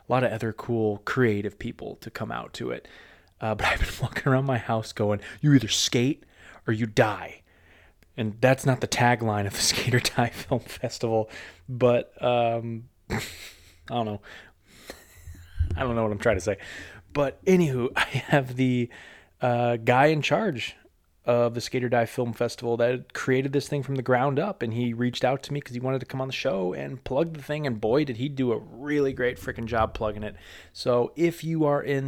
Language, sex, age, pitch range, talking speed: English, male, 20-39, 105-125 Hz, 205 wpm